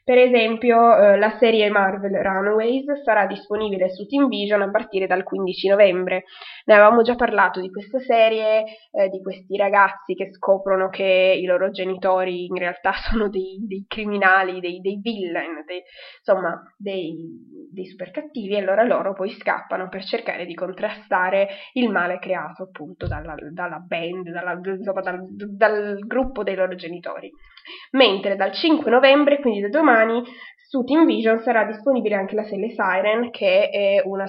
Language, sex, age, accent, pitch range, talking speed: Italian, female, 20-39, native, 190-230 Hz, 160 wpm